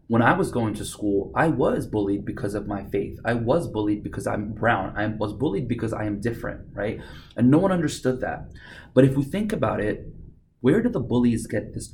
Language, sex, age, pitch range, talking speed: English, male, 30-49, 100-120 Hz, 220 wpm